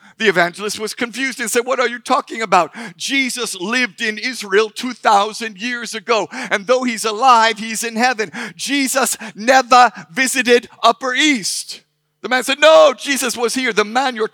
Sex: male